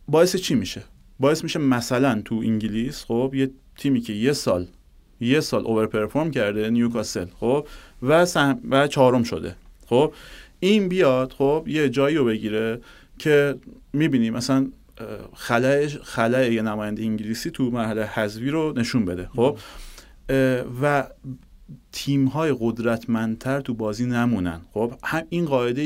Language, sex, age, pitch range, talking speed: Persian, male, 30-49, 105-130 Hz, 135 wpm